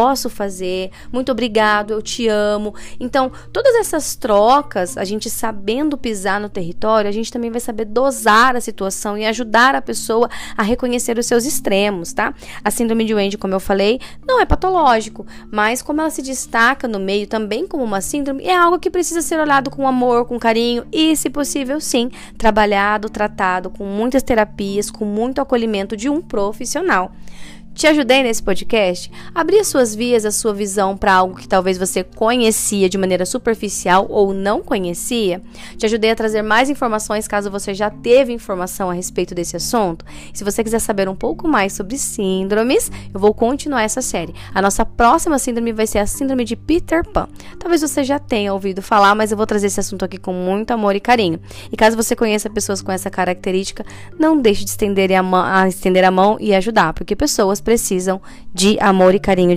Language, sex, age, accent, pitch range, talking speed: Portuguese, female, 10-29, Brazilian, 195-245 Hz, 185 wpm